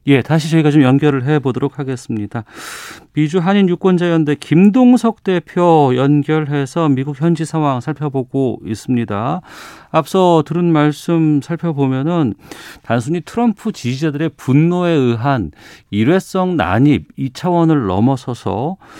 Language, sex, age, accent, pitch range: Korean, male, 40-59, native, 115-160 Hz